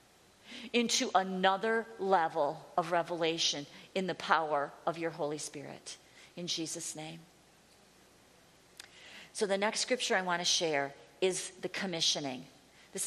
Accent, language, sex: American, English, female